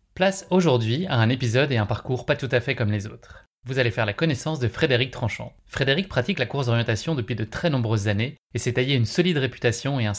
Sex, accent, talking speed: male, French, 240 wpm